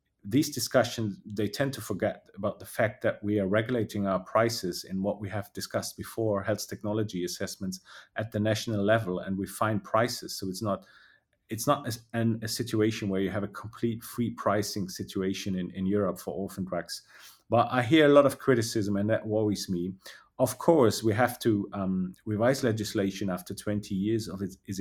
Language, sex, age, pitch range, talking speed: English, male, 30-49, 95-110 Hz, 195 wpm